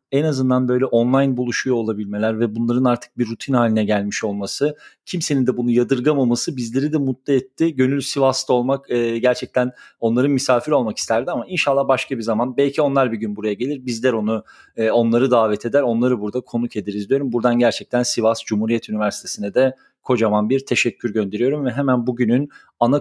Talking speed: 175 wpm